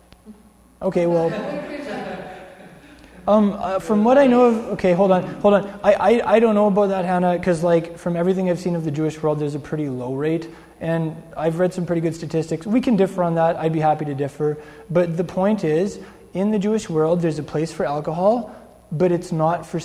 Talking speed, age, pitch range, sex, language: 215 wpm, 20-39, 150-190 Hz, male, English